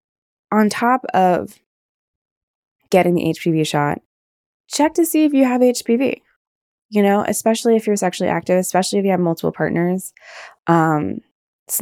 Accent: American